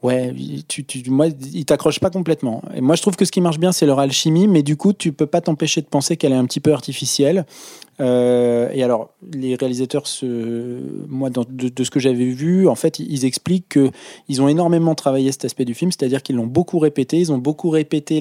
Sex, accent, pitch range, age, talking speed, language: male, French, 125-155 Hz, 20-39, 230 wpm, French